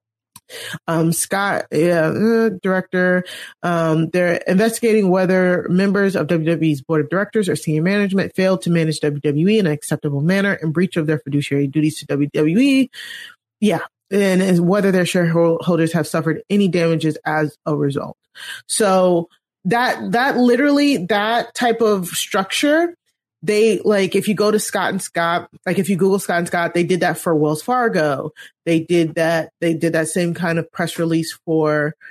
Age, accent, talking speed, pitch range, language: 20-39, American, 165 wpm, 160-210 Hz, English